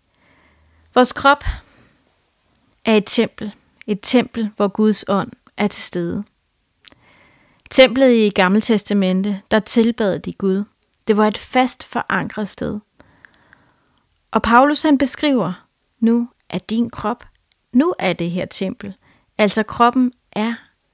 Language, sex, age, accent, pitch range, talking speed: English, female, 30-49, Danish, 200-240 Hz, 125 wpm